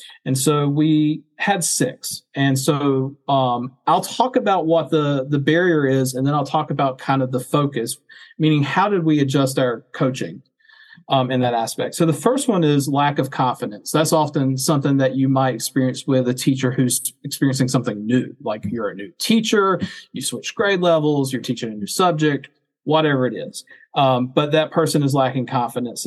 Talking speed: 190 wpm